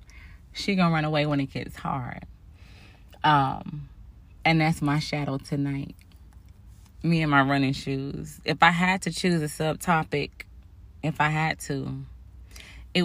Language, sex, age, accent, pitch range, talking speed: English, female, 20-39, American, 95-160 Hz, 145 wpm